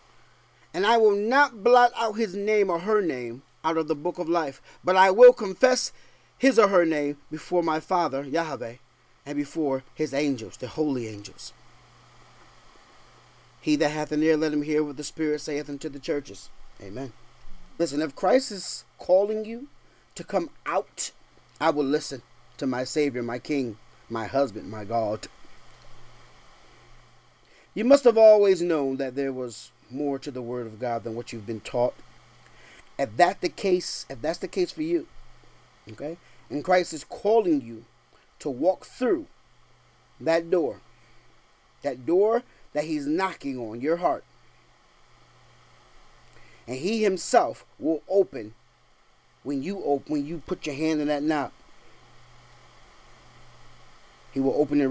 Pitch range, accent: 125-180 Hz, American